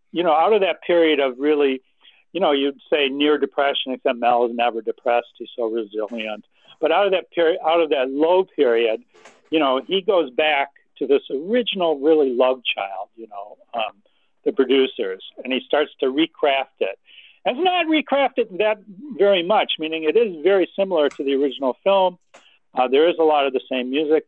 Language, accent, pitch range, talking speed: English, American, 135-210 Hz, 195 wpm